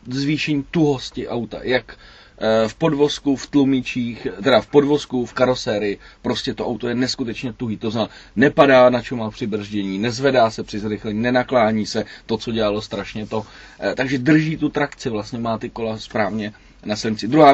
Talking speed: 170 wpm